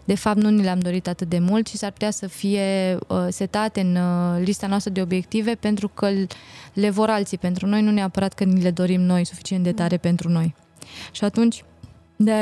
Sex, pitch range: female, 180-210 Hz